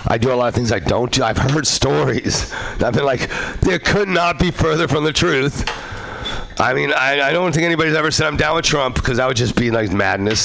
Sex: male